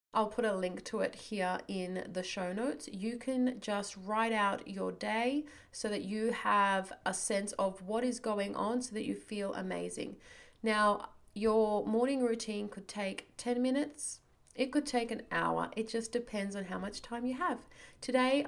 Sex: female